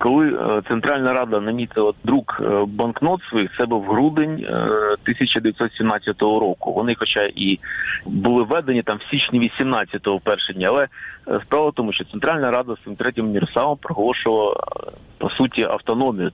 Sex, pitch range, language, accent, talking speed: male, 110-140 Hz, Ukrainian, native, 145 wpm